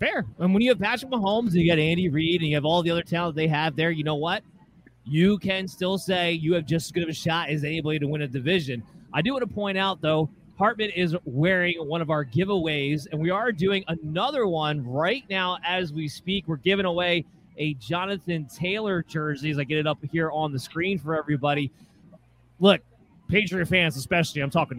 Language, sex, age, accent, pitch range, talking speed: English, male, 30-49, American, 150-180 Hz, 225 wpm